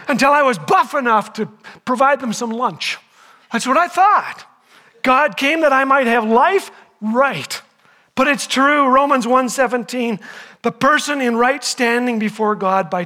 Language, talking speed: English, 160 wpm